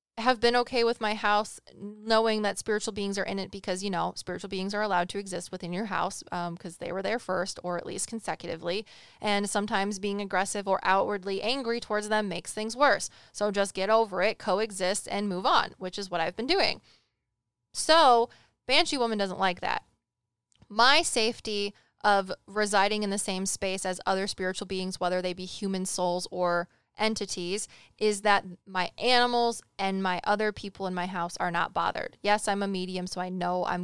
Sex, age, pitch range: female, 20-39, 185-215 Hz